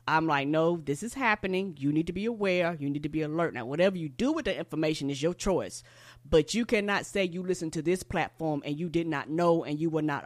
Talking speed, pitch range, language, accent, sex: 255 wpm, 150-195 Hz, English, American, female